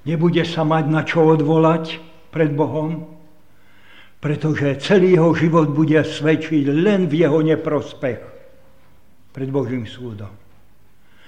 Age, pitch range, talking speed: 60-79, 105-155 Hz, 110 wpm